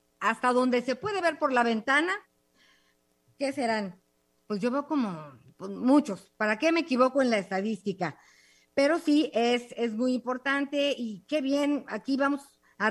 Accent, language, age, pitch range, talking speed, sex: Mexican, Spanish, 40-59, 210-265 Hz, 160 wpm, female